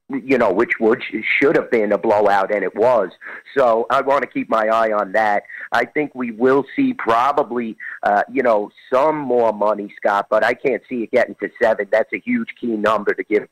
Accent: American